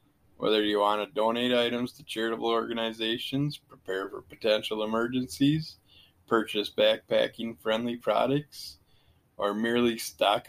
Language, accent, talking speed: English, American, 110 wpm